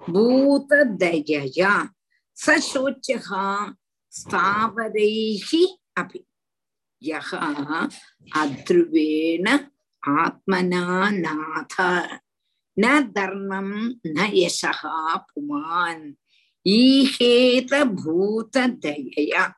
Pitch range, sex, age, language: 190-275 Hz, female, 50-69, Tamil